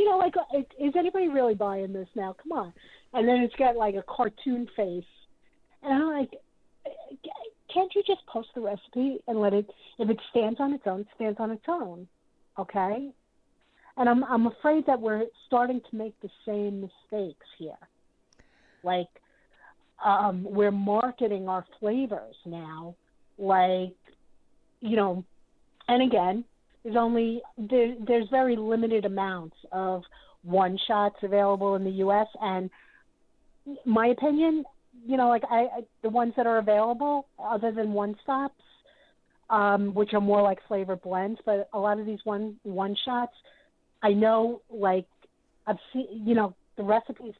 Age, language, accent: 50-69, English, American